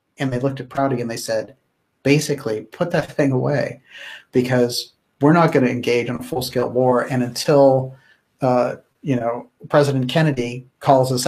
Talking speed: 170 wpm